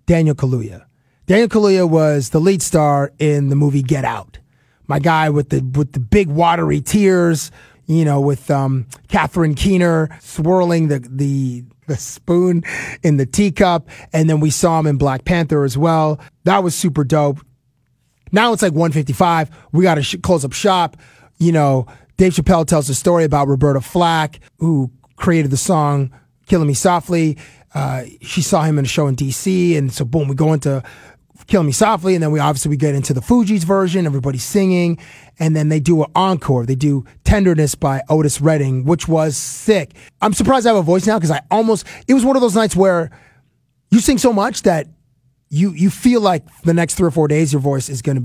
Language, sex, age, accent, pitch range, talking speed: English, male, 30-49, American, 140-180 Hz, 195 wpm